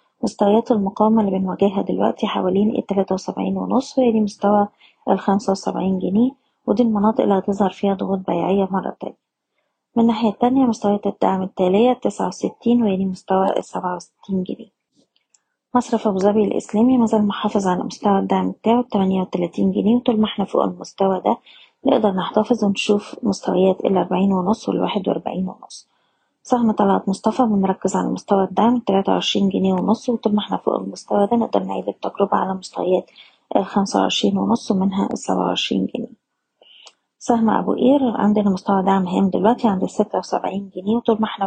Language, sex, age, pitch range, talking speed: Arabic, female, 20-39, 190-230 Hz, 145 wpm